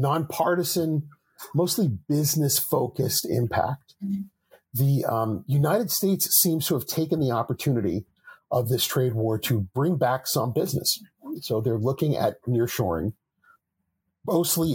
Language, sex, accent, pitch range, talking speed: English, male, American, 115-150 Hz, 120 wpm